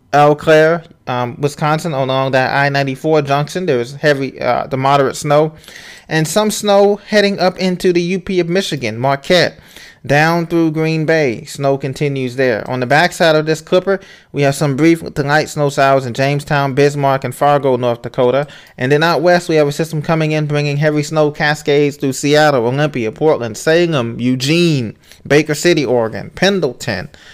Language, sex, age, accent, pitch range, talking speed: English, male, 20-39, American, 125-155 Hz, 175 wpm